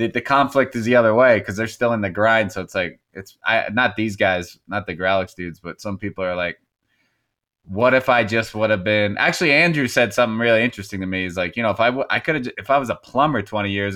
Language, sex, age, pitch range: English, male, 20-39, 95-115 Hz